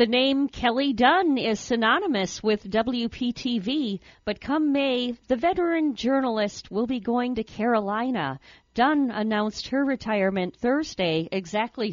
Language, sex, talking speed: English, female, 125 wpm